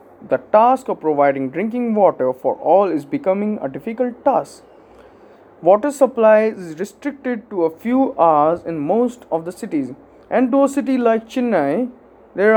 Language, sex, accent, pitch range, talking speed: English, male, Indian, 170-250 Hz, 160 wpm